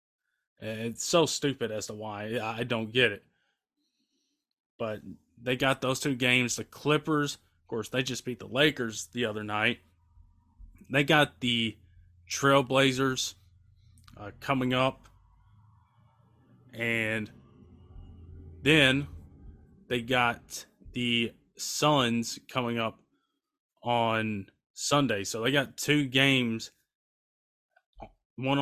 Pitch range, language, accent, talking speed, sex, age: 110-140 Hz, English, American, 105 wpm, male, 20-39